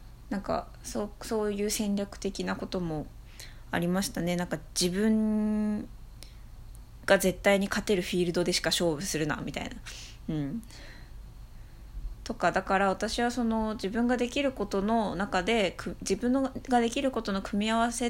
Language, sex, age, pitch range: Japanese, female, 20-39, 165-215 Hz